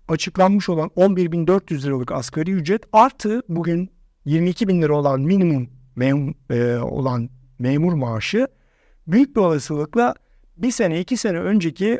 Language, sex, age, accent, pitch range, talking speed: Turkish, male, 60-79, native, 140-195 Hz, 125 wpm